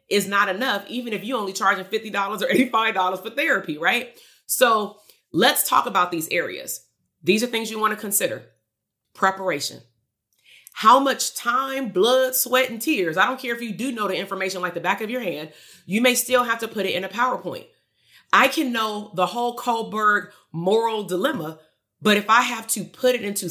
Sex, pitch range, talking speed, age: female, 180-240 Hz, 195 wpm, 30-49